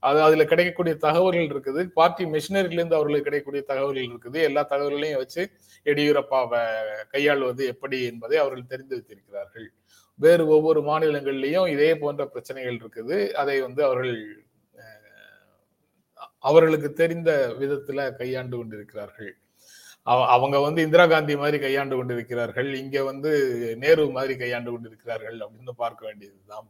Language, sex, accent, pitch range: Tamil, male, native, 125-160 Hz